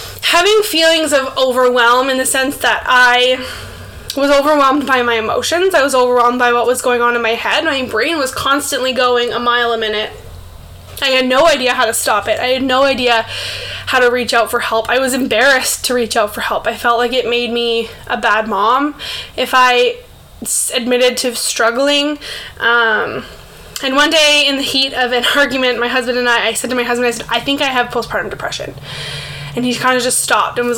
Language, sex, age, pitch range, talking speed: English, female, 10-29, 235-270 Hz, 215 wpm